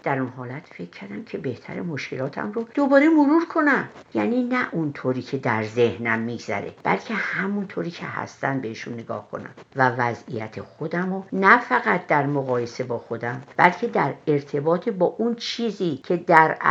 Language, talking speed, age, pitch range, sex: Persian, 160 wpm, 50-69, 135-205 Hz, female